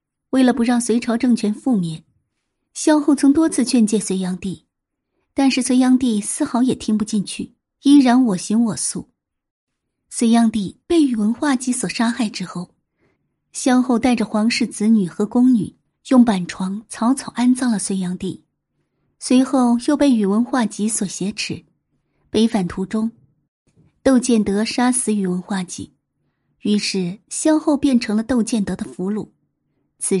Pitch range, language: 205-265 Hz, Chinese